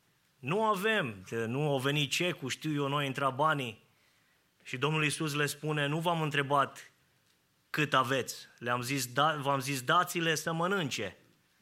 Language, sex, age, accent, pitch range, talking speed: English, male, 20-39, Romanian, 135-170 Hz, 150 wpm